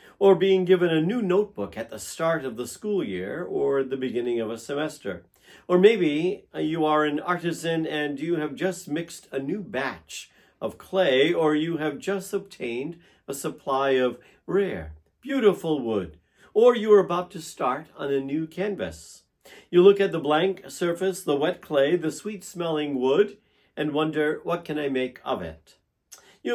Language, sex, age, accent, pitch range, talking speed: English, male, 50-69, American, 135-190 Hz, 175 wpm